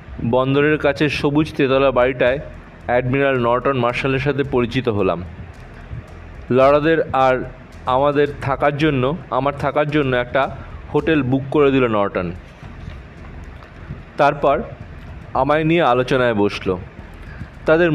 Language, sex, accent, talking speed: Bengali, male, native, 105 wpm